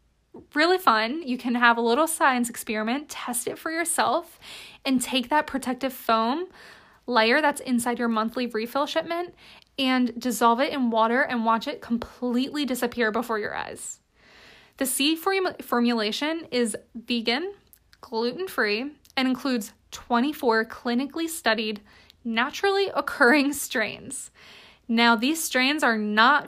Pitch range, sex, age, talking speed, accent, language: 230-295 Hz, female, 20-39, 130 wpm, American, English